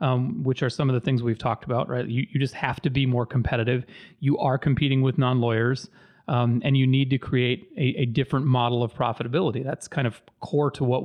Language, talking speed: English, 230 wpm